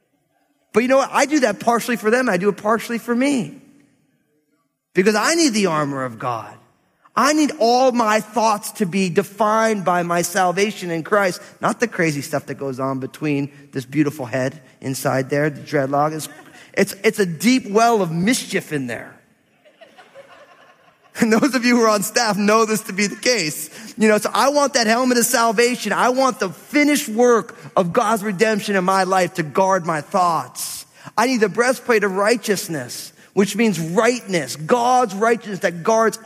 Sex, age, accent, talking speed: male, 30-49, American, 185 wpm